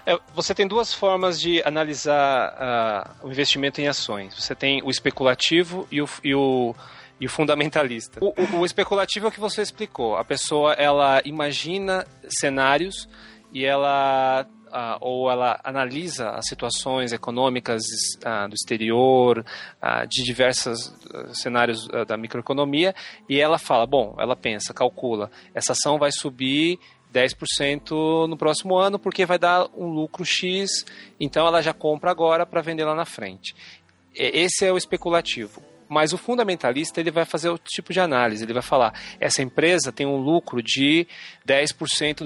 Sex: male